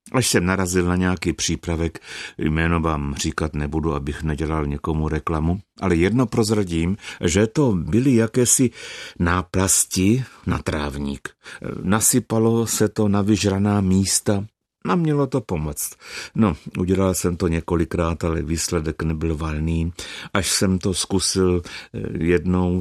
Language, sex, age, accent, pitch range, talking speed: Czech, male, 60-79, native, 80-100 Hz, 125 wpm